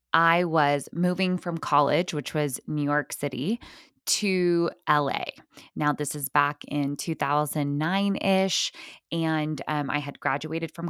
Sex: female